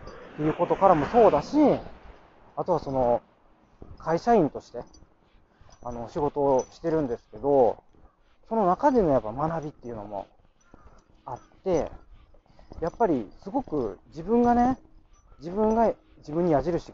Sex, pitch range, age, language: male, 145-235 Hz, 40-59, Japanese